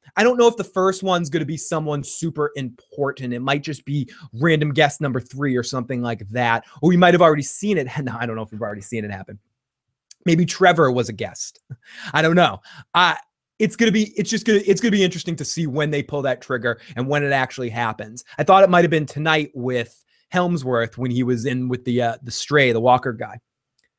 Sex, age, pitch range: male, 20-39, 125-165 Hz